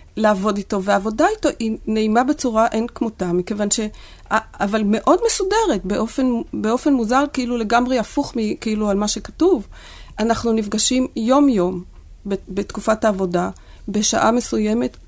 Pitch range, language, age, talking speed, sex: 195-260 Hz, Hebrew, 40-59, 125 wpm, female